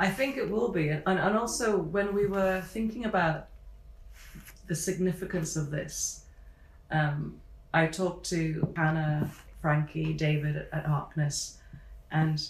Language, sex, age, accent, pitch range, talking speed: English, female, 30-49, British, 155-180 Hz, 130 wpm